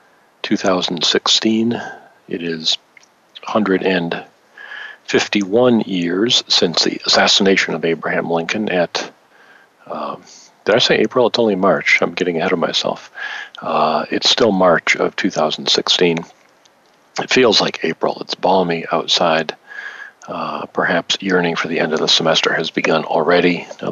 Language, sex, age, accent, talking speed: English, male, 50-69, American, 130 wpm